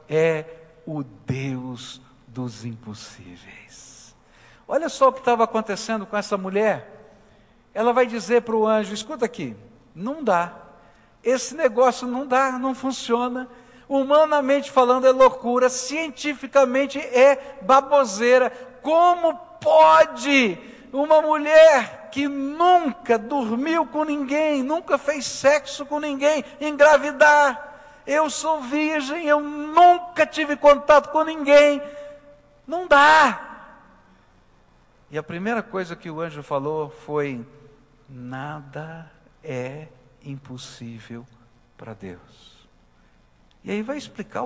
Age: 60-79